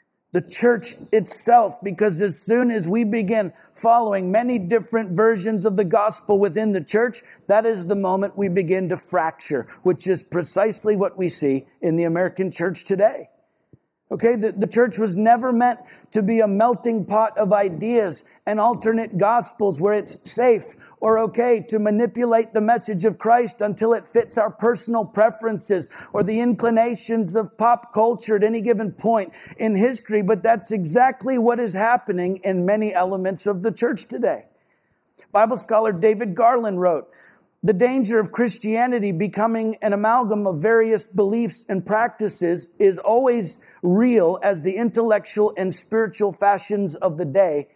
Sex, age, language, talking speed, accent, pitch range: male, 50-69, English, 160 wpm, American, 190-225 Hz